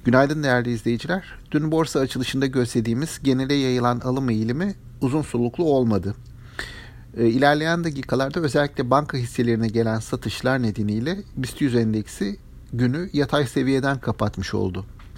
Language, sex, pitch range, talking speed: Turkish, male, 115-140 Hz, 115 wpm